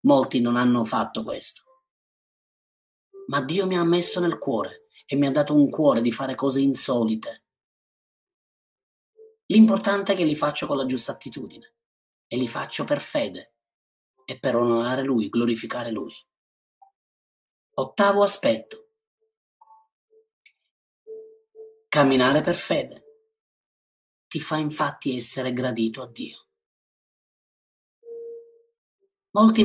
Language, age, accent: Italian, 30-49, native